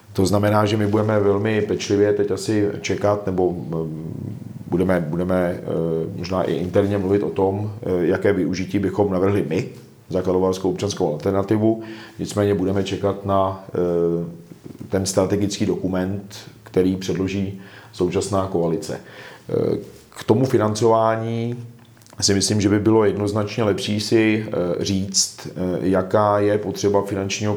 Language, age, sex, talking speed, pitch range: Czech, 40-59, male, 120 wpm, 95-105 Hz